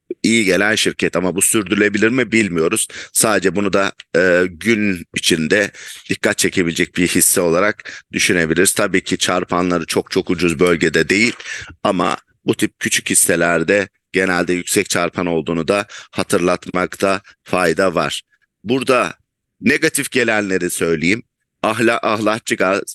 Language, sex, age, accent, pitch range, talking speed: English, male, 50-69, Turkish, 90-110 Hz, 125 wpm